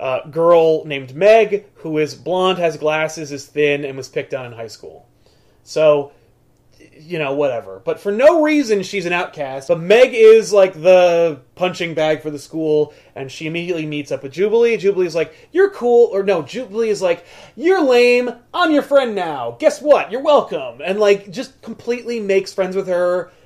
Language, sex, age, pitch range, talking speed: English, male, 30-49, 150-225 Hz, 190 wpm